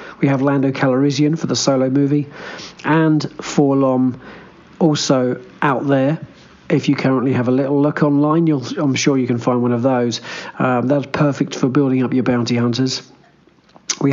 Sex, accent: male, British